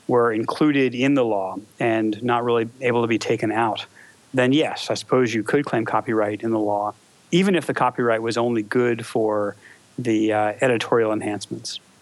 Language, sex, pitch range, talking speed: English, male, 115-140 Hz, 180 wpm